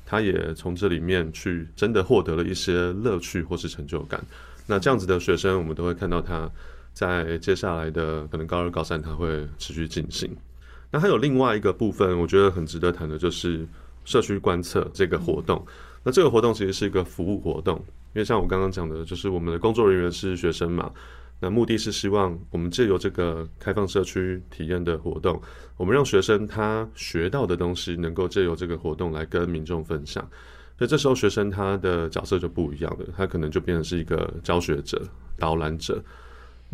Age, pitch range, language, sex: 20-39, 80-95 Hz, Chinese, male